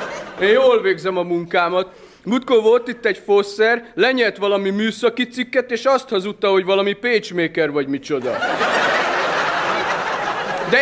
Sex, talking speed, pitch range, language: male, 130 wpm, 190-250 Hz, Hungarian